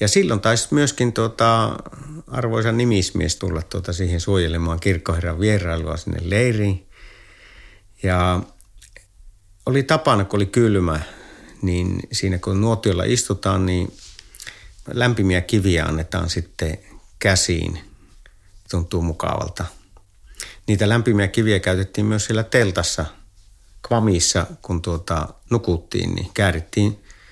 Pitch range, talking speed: 85-105 Hz, 105 wpm